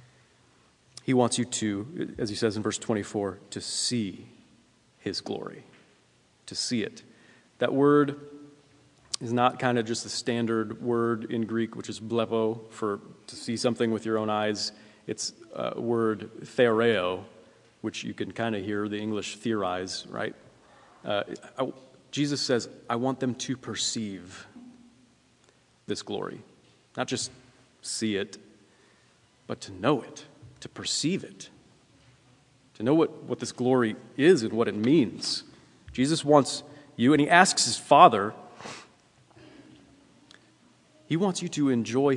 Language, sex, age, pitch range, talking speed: English, male, 30-49, 105-130 Hz, 140 wpm